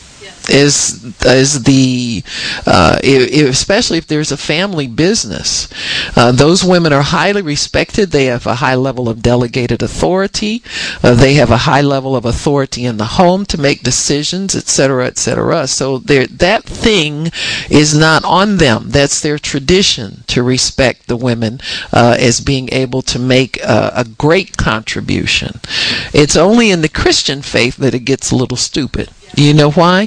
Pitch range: 130-160 Hz